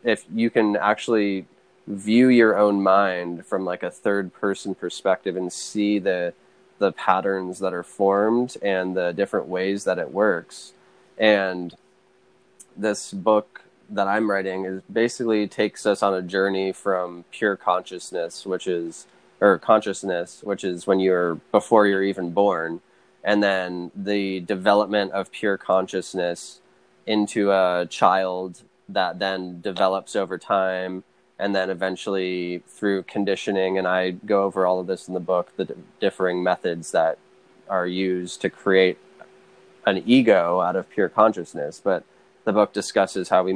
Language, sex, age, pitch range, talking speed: English, male, 20-39, 90-100 Hz, 145 wpm